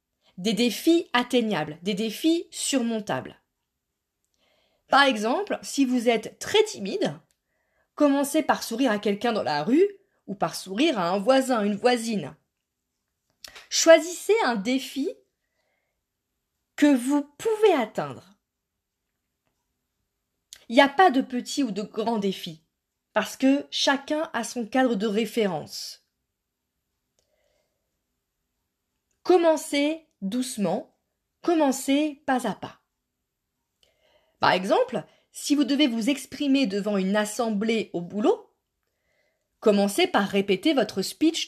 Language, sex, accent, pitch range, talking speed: French, female, French, 205-285 Hz, 110 wpm